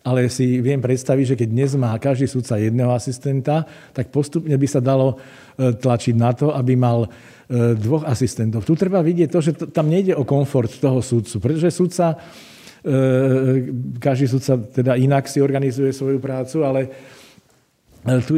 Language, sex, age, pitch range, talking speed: Slovak, male, 50-69, 120-140 Hz, 155 wpm